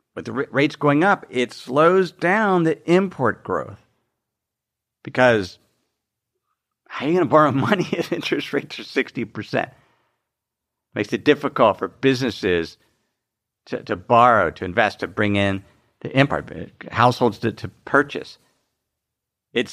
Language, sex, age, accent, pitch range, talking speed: English, male, 50-69, American, 110-135 Hz, 135 wpm